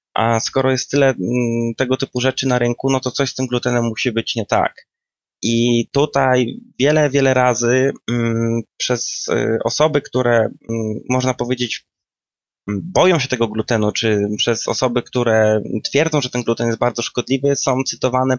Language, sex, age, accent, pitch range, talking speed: Polish, male, 20-39, native, 120-135 Hz, 150 wpm